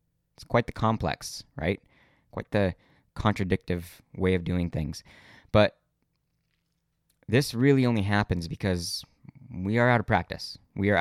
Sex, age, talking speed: male, 20-39, 135 wpm